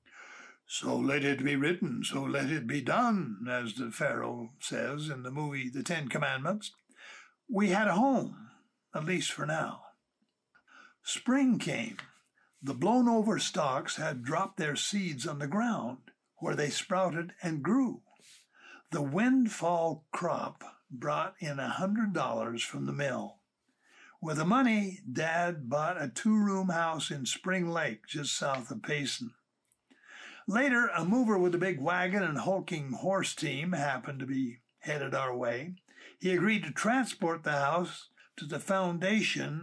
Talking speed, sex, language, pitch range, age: 145 wpm, male, English, 150-200 Hz, 60-79